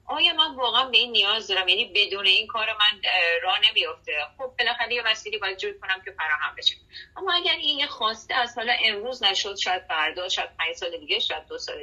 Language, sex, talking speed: Persian, female, 215 wpm